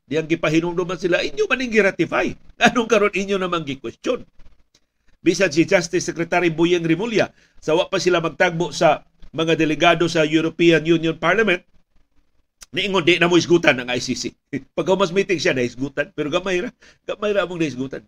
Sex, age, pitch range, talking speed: male, 50-69, 140-185 Hz, 165 wpm